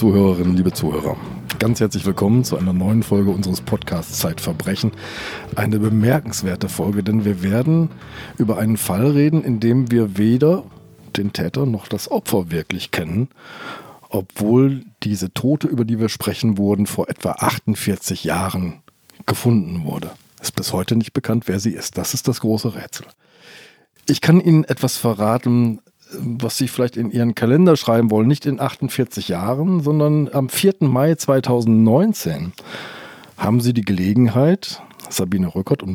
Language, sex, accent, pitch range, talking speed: German, male, German, 105-130 Hz, 150 wpm